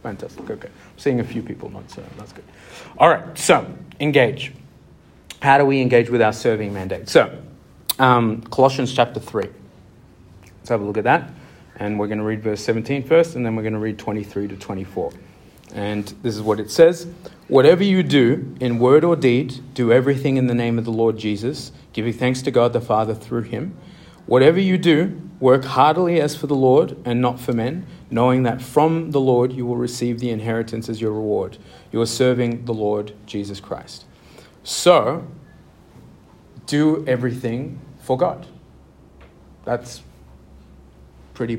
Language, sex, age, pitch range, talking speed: English, male, 40-59, 105-130 Hz, 175 wpm